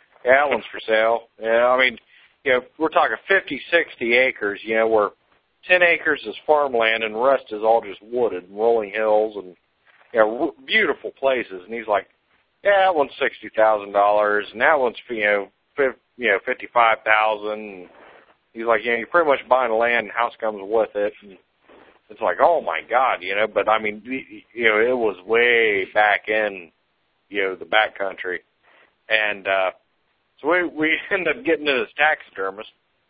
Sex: male